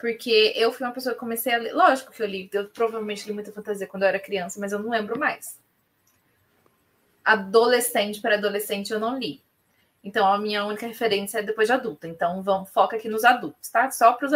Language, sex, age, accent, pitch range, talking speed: Portuguese, female, 20-39, Brazilian, 210-260 Hz, 215 wpm